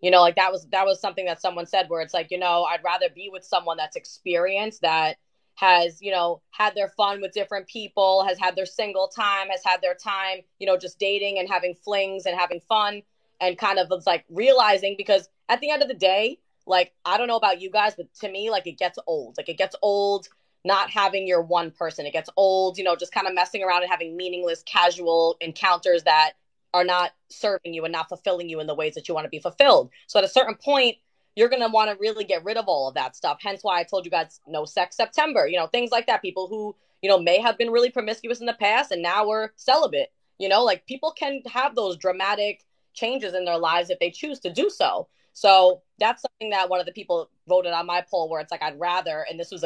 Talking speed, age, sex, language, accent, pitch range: 250 wpm, 20-39, female, English, American, 175-210 Hz